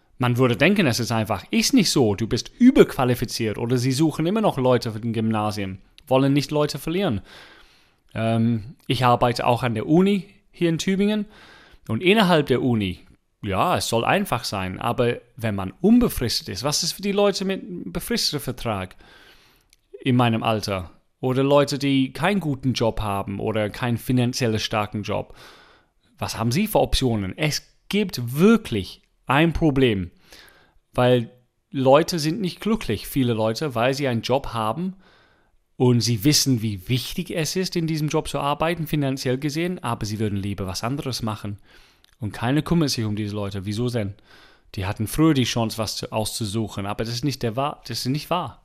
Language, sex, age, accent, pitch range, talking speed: German, male, 30-49, German, 110-155 Hz, 170 wpm